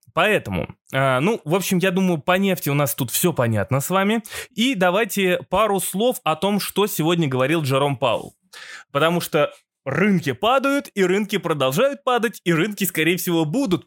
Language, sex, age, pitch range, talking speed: Russian, male, 20-39, 155-205 Hz, 170 wpm